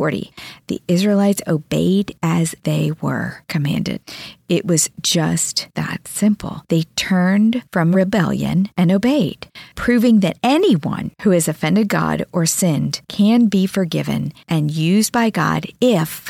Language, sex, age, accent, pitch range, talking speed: English, female, 40-59, American, 170-225 Hz, 135 wpm